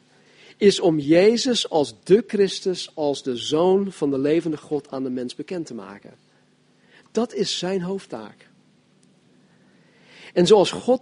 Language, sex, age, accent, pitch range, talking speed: Dutch, male, 40-59, Dutch, 135-190 Hz, 140 wpm